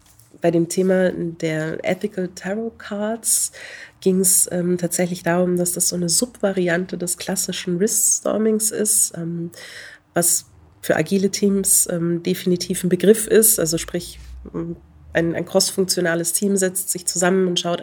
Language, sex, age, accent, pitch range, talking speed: German, female, 30-49, German, 165-185 Hz, 140 wpm